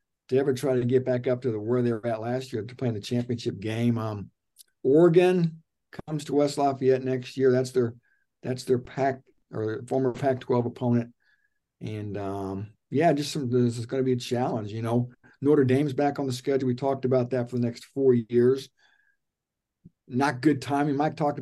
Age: 50-69